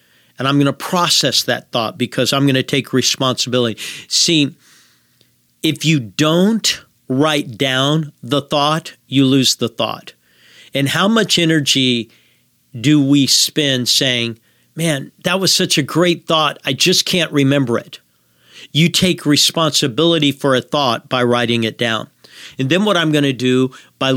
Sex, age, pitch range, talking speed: male, 50-69, 125-150 Hz, 155 wpm